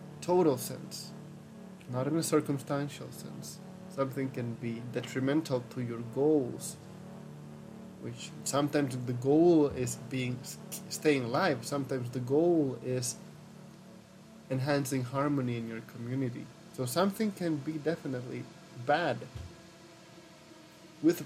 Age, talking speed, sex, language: 20-39, 105 wpm, male, English